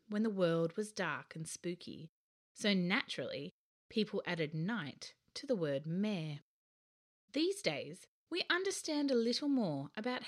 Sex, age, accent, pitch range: female, 30-49, Australian, 155-230 Hz